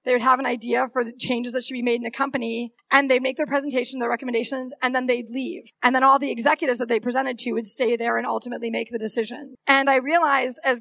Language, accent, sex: English, American, female